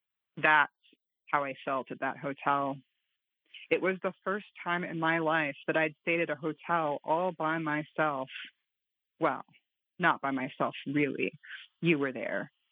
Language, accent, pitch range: English, American, 150-185 Hz